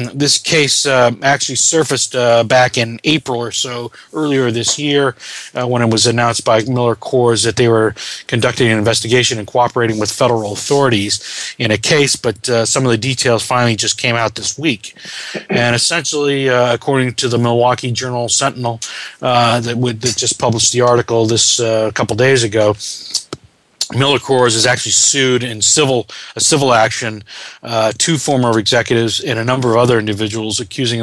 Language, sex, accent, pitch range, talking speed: English, male, American, 115-130 Hz, 170 wpm